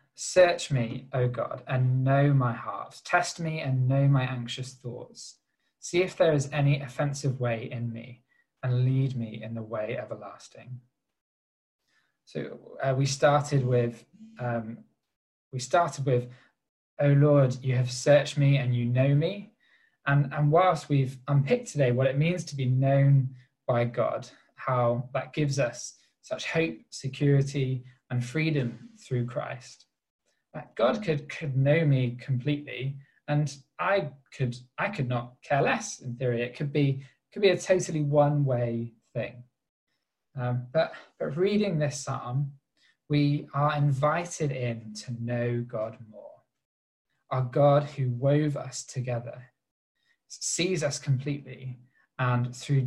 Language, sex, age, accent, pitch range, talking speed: English, male, 20-39, British, 125-145 Hz, 140 wpm